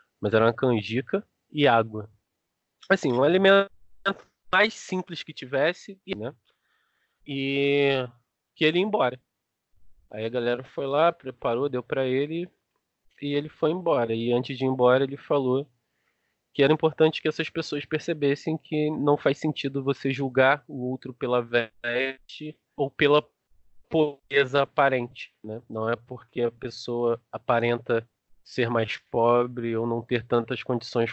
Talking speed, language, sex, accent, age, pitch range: 145 wpm, Portuguese, male, Brazilian, 20-39, 110-140 Hz